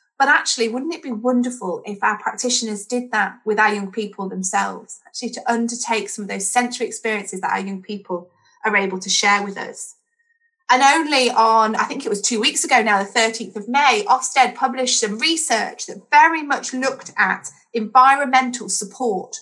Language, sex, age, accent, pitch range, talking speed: English, female, 30-49, British, 205-260 Hz, 185 wpm